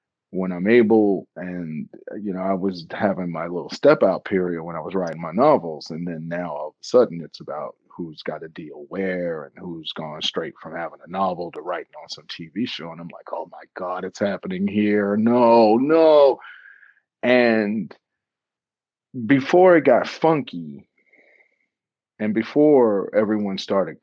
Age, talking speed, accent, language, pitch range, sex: 40-59, 170 wpm, American, English, 90-110 Hz, male